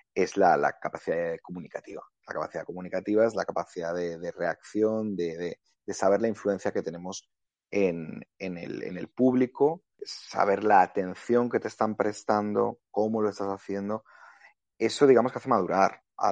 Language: Spanish